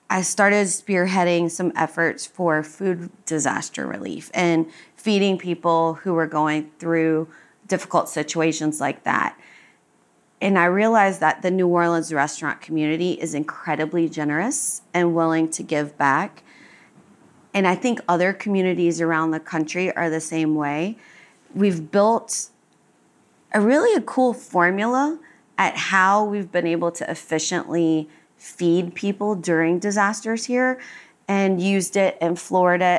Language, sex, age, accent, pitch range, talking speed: English, female, 30-49, American, 165-195 Hz, 130 wpm